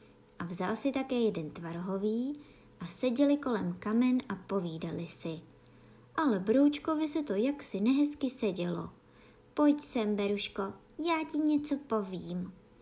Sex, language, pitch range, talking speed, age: male, Czech, 200-320 Hz, 125 wpm, 20-39